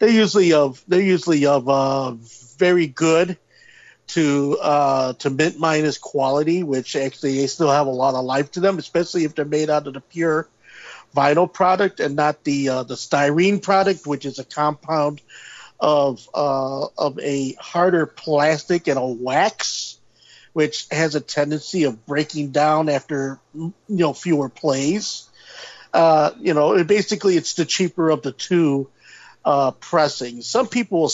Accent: American